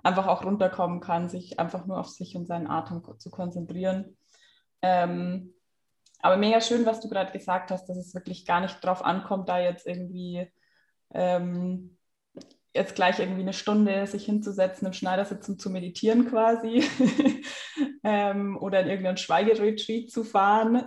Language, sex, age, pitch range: German, female, 20-39, 175-205 Hz